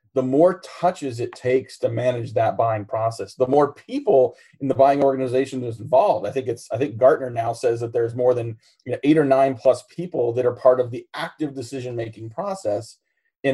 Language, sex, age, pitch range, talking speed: English, male, 30-49, 115-140 Hz, 200 wpm